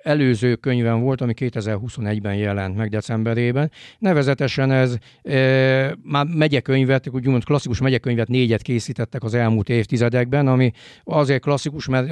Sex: male